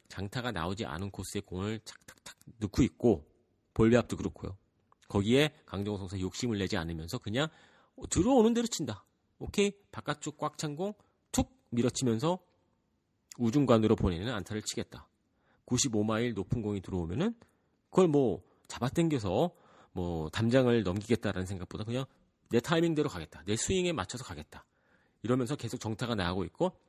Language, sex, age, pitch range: Korean, male, 40-59, 100-150 Hz